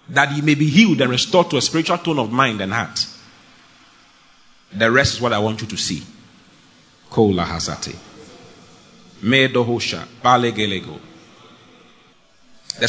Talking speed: 115 wpm